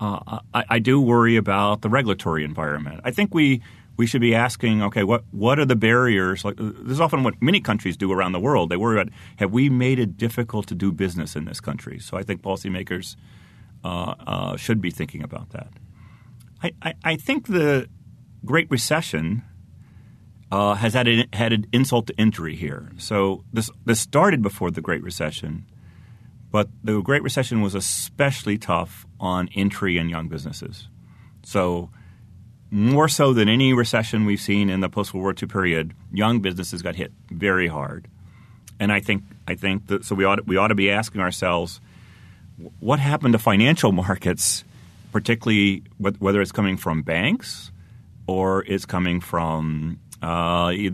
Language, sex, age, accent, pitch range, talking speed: English, male, 40-59, American, 95-115 Hz, 175 wpm